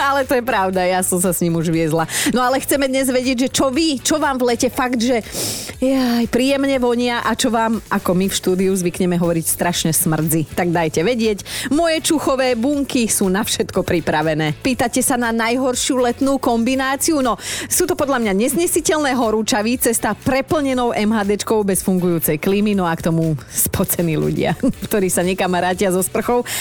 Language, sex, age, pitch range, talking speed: Slovak, female, 30-49, 180-260 Hz, 180 wpm